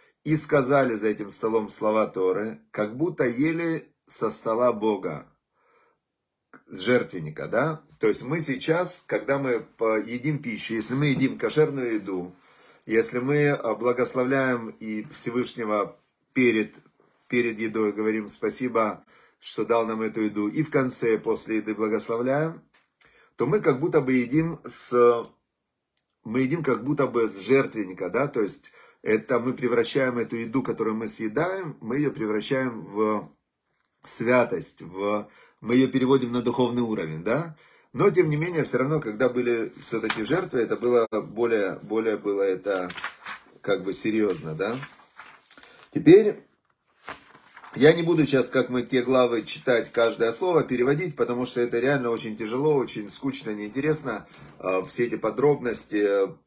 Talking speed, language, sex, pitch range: 140 wpm, Russian, male, 110-140 Hz